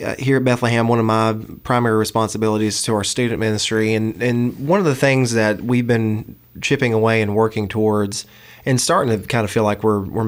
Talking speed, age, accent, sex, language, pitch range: 205 wpm, 20-39, American, male, English, 110-120 Hz